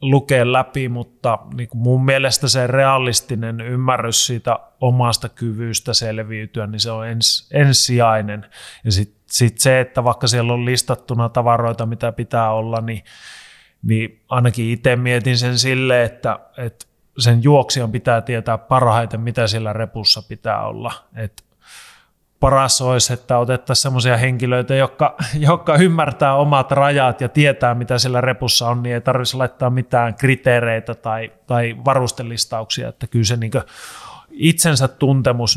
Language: Finnish